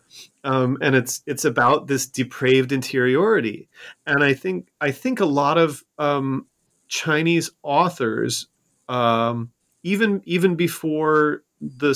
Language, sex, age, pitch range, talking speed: English, male, 30-49, 115-150 Hz, 120 wpm